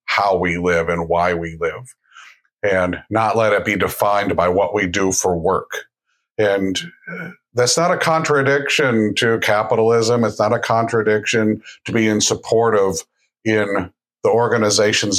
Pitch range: 100-125 Hz